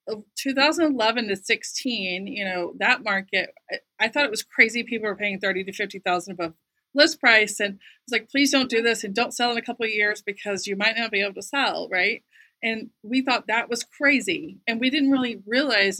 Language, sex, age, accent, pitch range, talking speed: English, female, 30-49, American, 190-240 Hz, 210 wpm